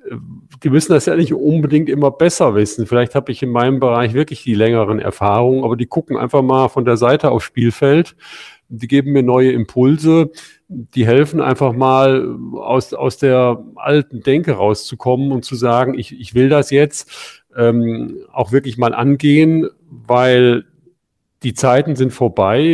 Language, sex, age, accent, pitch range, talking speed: German, male, 40-59, German, 115-135 Hz, 165 wpm